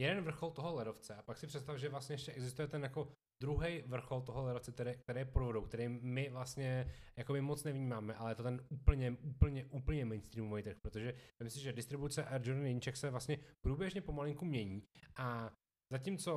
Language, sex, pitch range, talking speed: Czech, male, 115-140 Hz, 185 wpm